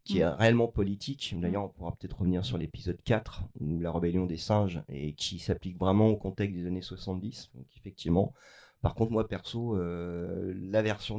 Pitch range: 90-110 Hz